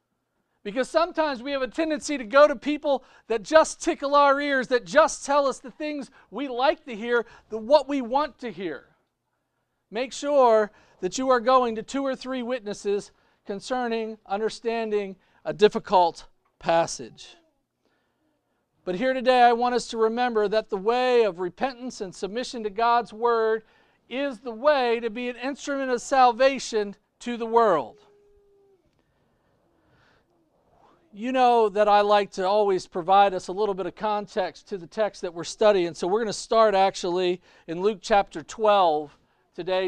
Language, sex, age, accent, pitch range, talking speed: English, male, 50-69, American, 200-260 Hz, 160 wpm